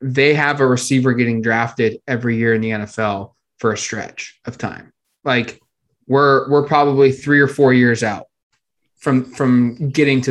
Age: 20-39